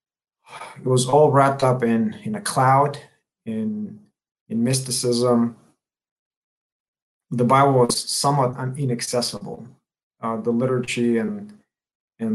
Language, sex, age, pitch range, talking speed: English, male, 30-49, 115-145 Hz, 110 wpm